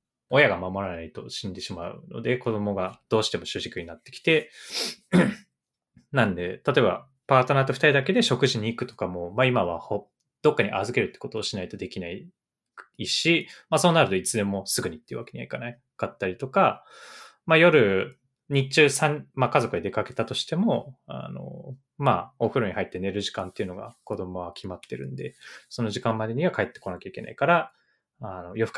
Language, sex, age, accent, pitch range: Japanese, male, 20-39, native, 100-145 Hz